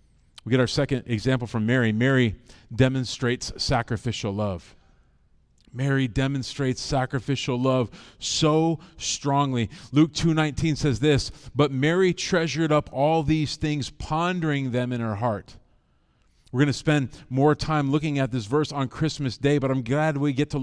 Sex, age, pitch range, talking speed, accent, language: male, 40-59, 140-195 Hz, 150 wpm, American, English